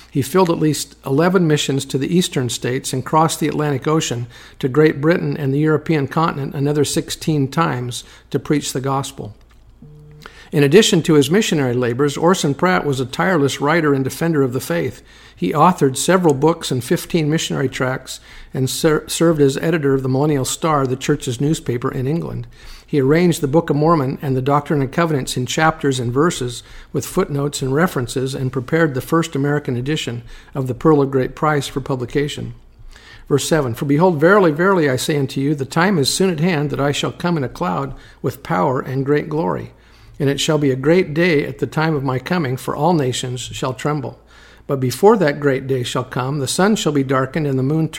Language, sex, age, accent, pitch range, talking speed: English, male, 50-69, American, 135-160 Hz, 200 wpm